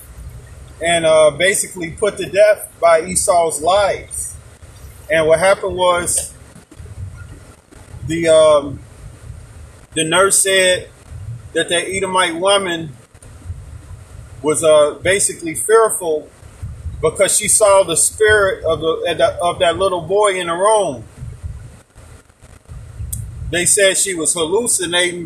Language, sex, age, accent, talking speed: English, male, 30-49, American, 105 wpm